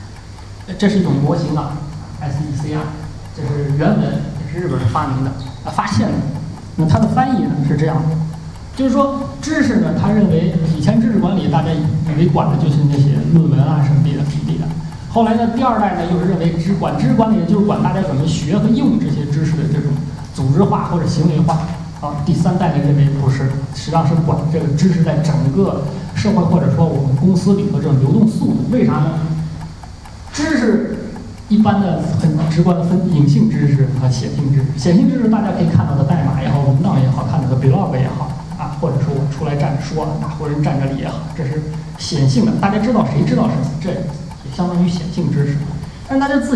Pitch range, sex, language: 145-195 Hz, male, Chinese